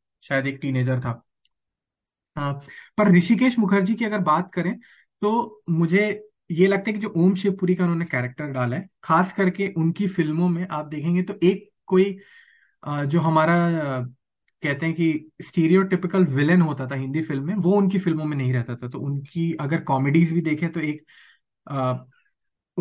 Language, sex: Hindi, male